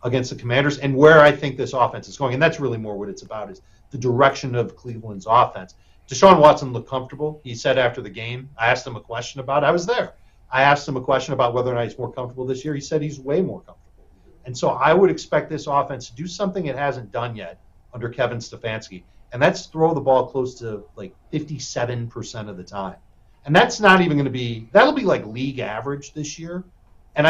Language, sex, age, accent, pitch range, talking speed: English, male, 40-59, American, 115-150 Hz, 235 wpm